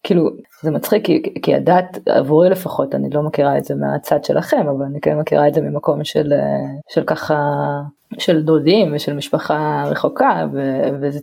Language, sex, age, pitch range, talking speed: Hebrew, female, 20-39, 150-190 Hz, 170 wpm